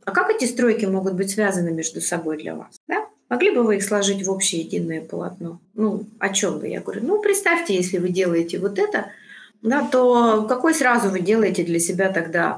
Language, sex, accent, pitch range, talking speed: Russian, female, native, 185-235 Hz, 205 wpm